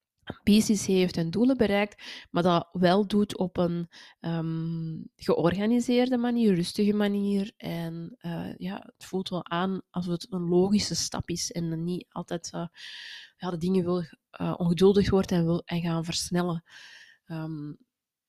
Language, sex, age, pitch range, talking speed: Dutch, female, 20-39, 175-205 Hz, 155 wpm